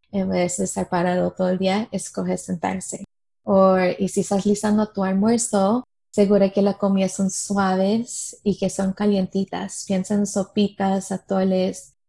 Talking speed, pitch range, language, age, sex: 155 wpm, 190-210 Hz, Spanish, 20-39, female